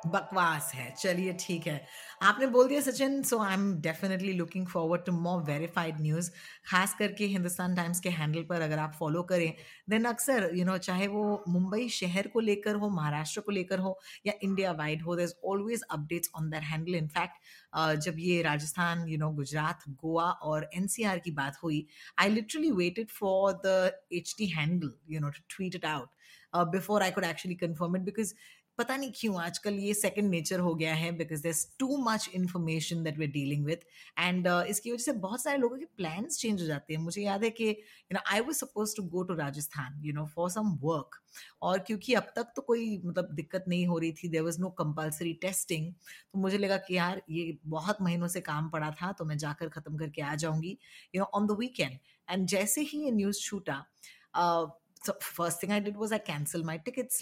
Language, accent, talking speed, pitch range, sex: Hindi, native, 200 wpm, 165-205 Hz, female